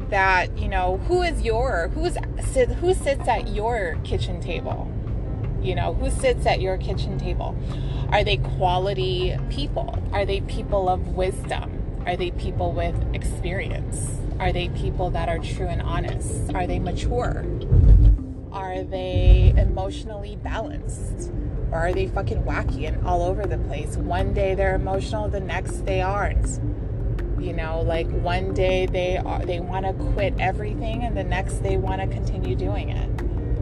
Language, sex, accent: English, female, American